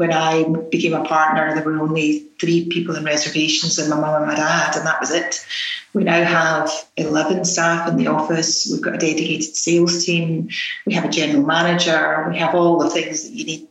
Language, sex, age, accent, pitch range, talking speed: English, female, 30-49, British, 160-190 Hz, 215 wpm